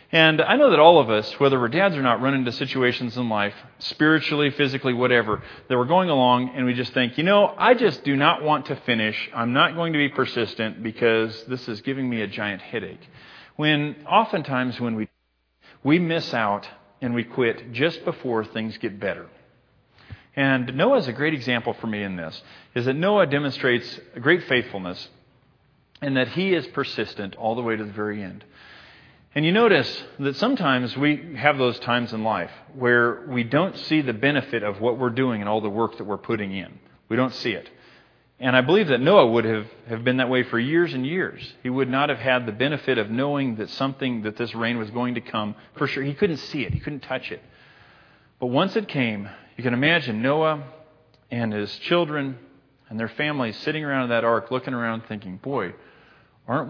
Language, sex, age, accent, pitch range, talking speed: English, male, 40-59, American, 115-140 Hz, 205 wpm